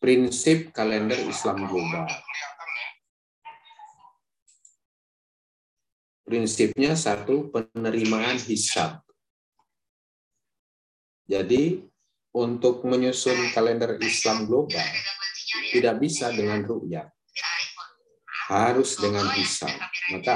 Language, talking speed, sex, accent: Indonesian, 65 wpm, male, native